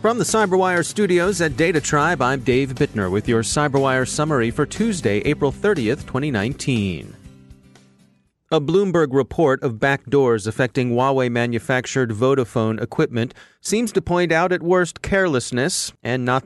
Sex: male